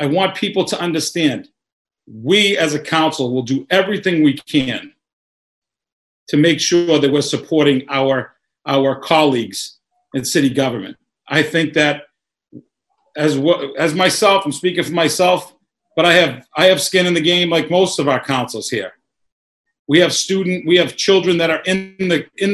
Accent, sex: American, male